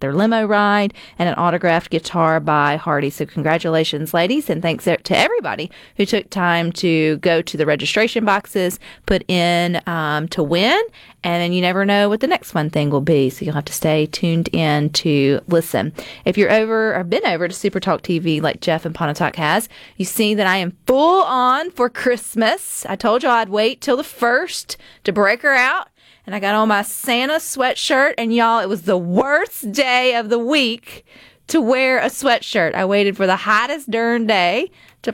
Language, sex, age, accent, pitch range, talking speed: English, female, 30-49, American, 165-215 Hz, 200 wpm